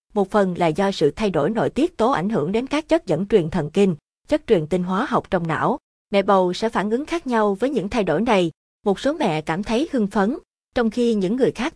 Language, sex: Vietnamese, female